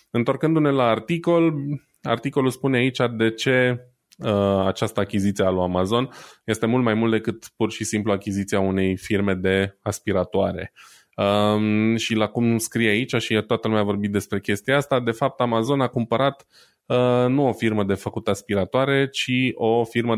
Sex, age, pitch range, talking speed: male, 20-39, 100-125 Hz, 165 wpm